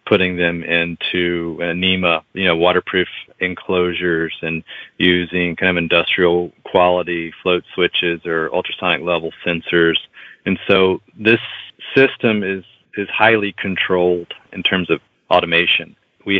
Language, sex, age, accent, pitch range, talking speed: English, male, 40-59, American, 85-90 Hz, 120 wpm